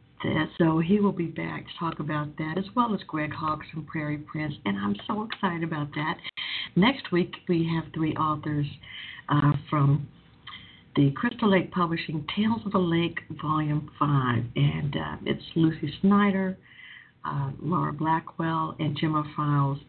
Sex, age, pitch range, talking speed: female, 60-79, 145-175 Hz, 155 wpm